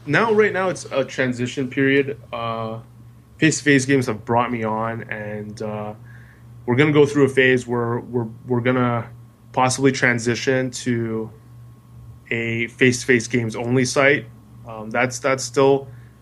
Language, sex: English, male